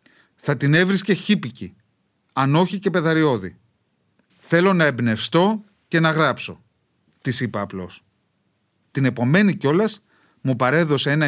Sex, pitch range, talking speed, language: male, 120-175 Hz, 120 wpm, Greek